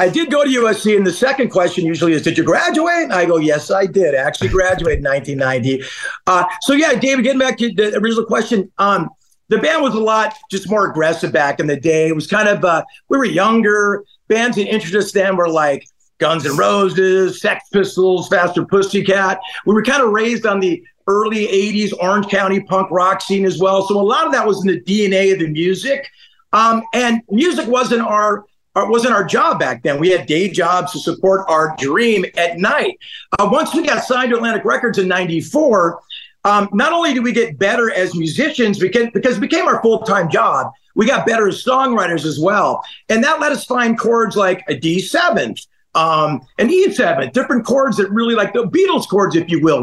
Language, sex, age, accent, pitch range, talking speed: English, male, 50-69, American, 185-235 Hz, 205 wpm